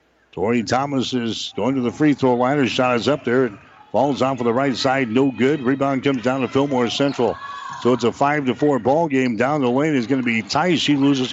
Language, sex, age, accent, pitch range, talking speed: English, male, 60-79, American, 125-145 Hz, 250 wpm